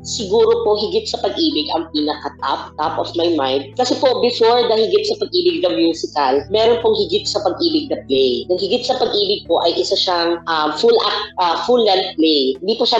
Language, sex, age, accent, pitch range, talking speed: Filipino, female, 20-39, native, 160-230 Hz, 205 wpm